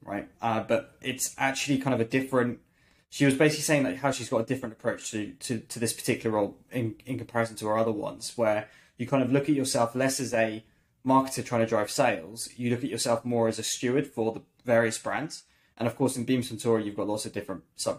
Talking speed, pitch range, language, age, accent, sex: 245 wpm, 110-130 Hz, English, 10-29, British, male